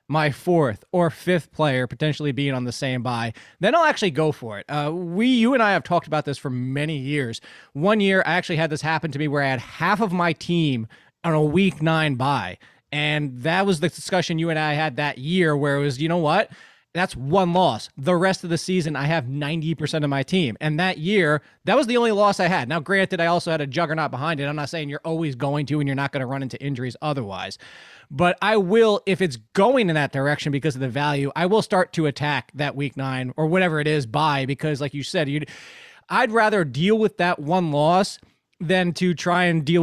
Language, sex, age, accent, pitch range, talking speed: English, male, 20-39, American, 145-180 Hz, 240 wpm